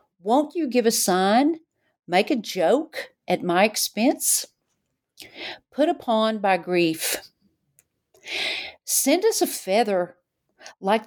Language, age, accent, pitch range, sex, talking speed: English, 50-69, American, 165-215 Hz, female, 110 wpm